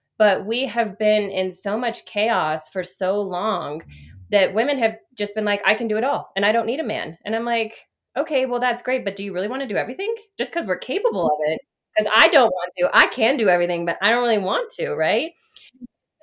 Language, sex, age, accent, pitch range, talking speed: English, female, 20-39, American, 185-235 Hz, 240 wpm